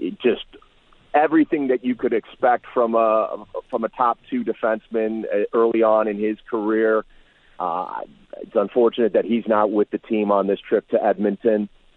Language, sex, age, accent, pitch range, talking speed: English, male, 40-59, American, 105-135 Hz, 160 wpm